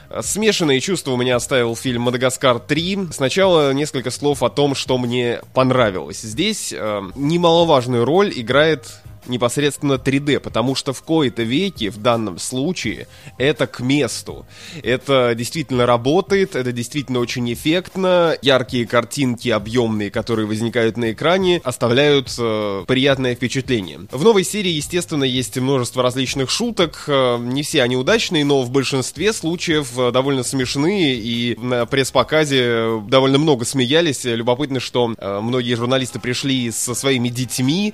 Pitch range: 120-145 Hz